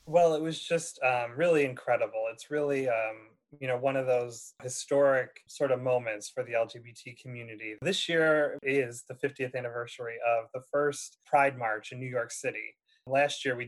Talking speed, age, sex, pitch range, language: 180 wpm, 30-49, male, 125-150 Hz, English